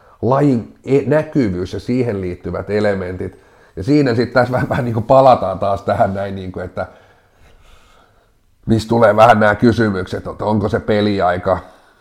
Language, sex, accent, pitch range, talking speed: Finnish, male, native, 90-105 Hz, 150 wpm